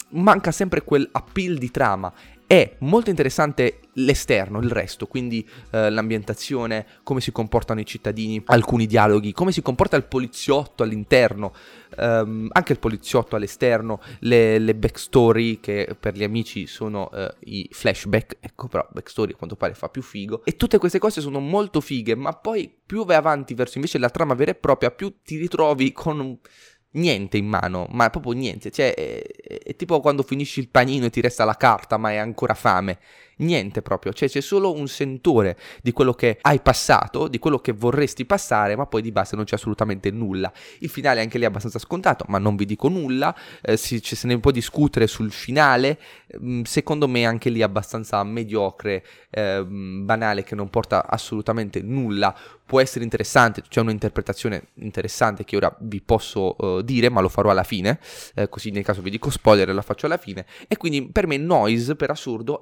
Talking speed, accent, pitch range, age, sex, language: 185 wpm, native, 105-140 Hz, 20-39, male, Italian